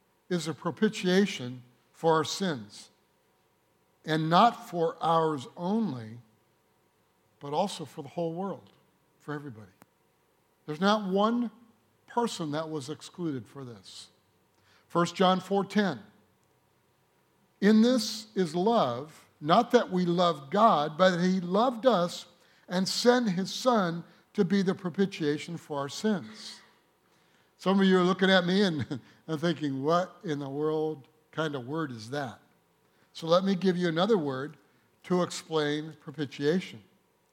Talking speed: 140 wpm